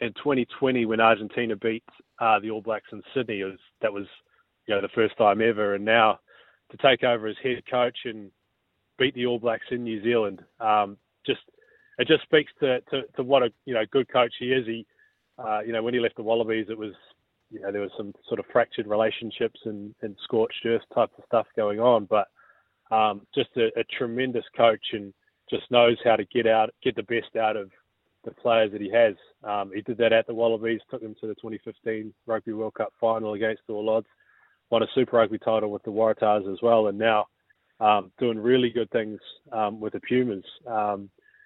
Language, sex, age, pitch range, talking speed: English, male, 20-39, 110-125 Hz, 190 wpm